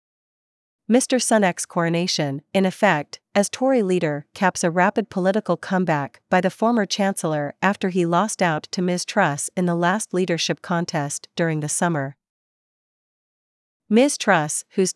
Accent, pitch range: American, 165-200 Hz